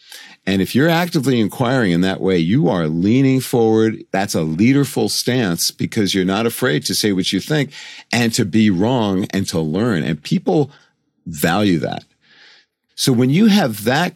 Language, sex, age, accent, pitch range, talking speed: English, male, 50-69, American, 100-140 Hz, 175 wpm